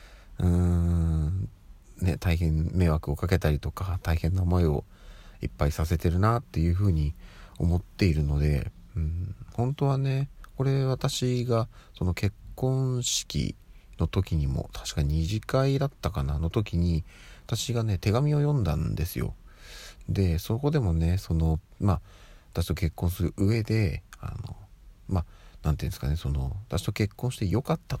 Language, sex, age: Japanese, male, 40-59